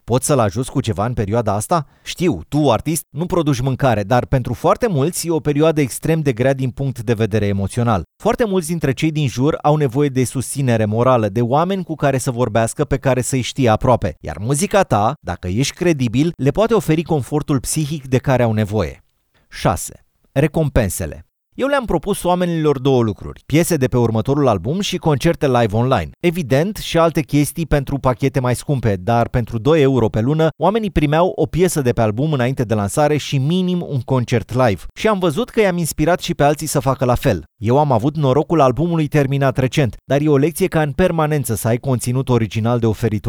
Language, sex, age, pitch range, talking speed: Romanian, male, 30-49, 120-160 Hz, 200 wpm